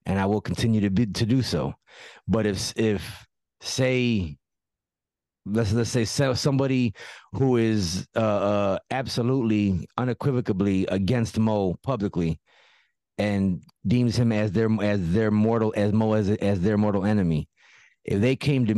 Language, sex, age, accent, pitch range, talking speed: English, male, 30-49, American, 105-135 Hz, 145 wpm